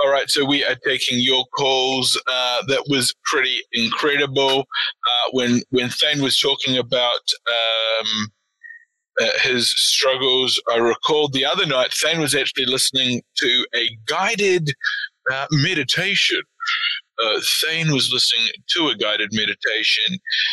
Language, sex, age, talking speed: English, male, 20-39, 135 wpm